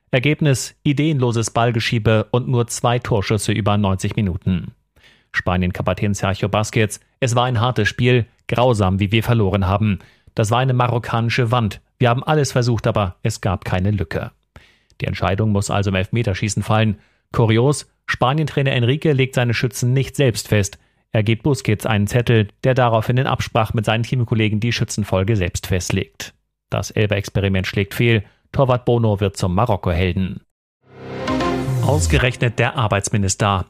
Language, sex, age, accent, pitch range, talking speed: German, male, 40-59, German, 105-125 Hz, 145 wpm